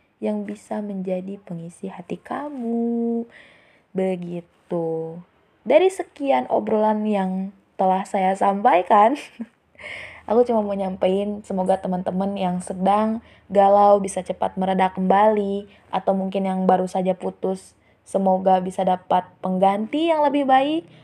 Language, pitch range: Indonesian, 185-245 Hz